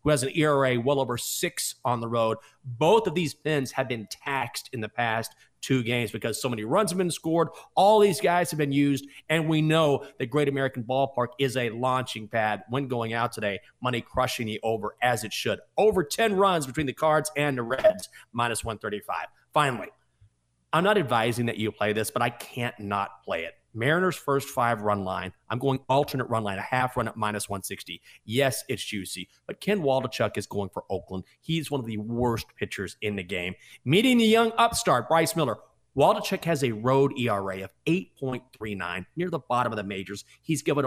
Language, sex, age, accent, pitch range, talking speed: English, male, 40-59, American, 110-155 Hz, 205 wpm